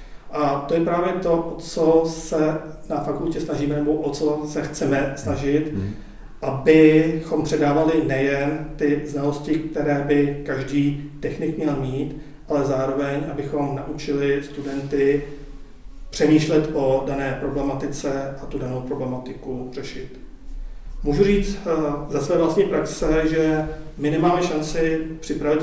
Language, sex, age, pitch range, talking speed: Czech, male, 40-59, 140-155 Hz, 125 wpm